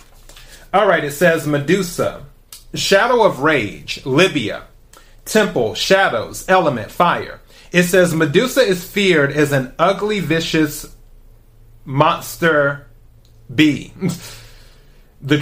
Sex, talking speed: male, 95 wpm